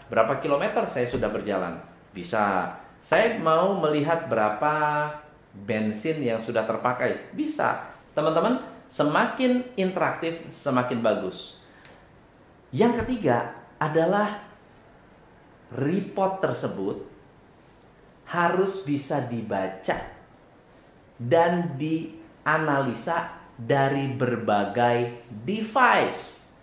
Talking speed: 75 wpm